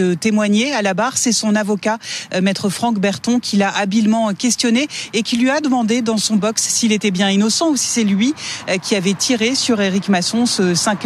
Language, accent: French, French